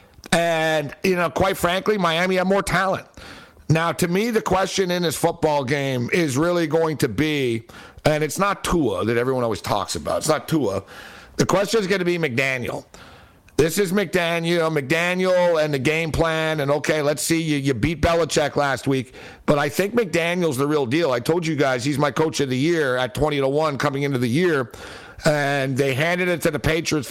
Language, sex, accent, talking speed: English, male, American, 205 wpm